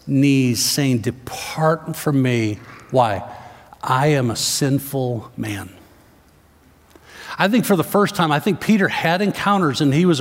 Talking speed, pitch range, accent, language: 145 wpm, 135-200 Hz, American, English